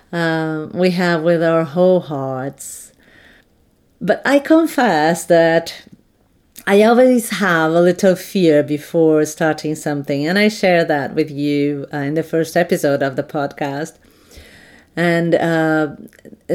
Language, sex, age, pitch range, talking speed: English, female, 40-59, 150-175 Hz, 130 wpm